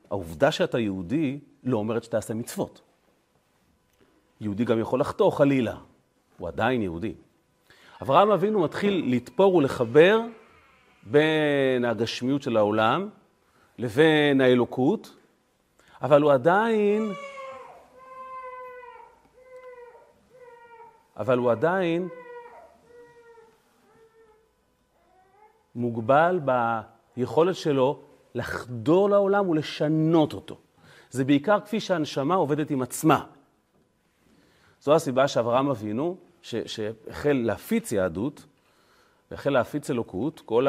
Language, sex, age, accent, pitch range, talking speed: Hebrew, male, 40-59, native, 125-195 Hz, 85 wpm